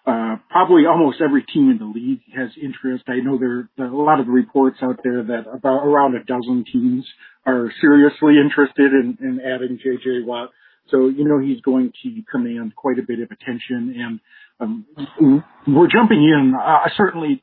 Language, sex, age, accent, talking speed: English, male, 50-69, American, 190 wpm